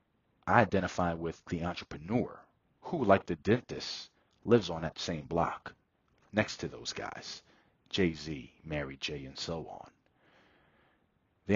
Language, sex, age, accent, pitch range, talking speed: English, male, 40-59, American, 80-100 Hz, 130 wpm